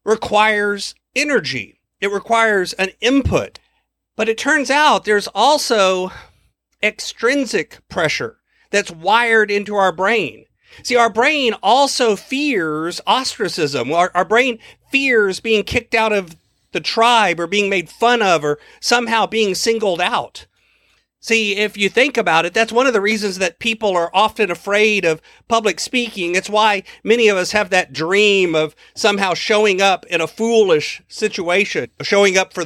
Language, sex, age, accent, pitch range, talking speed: English, male, 40-59, American, 180-230 Hz, 150 wpm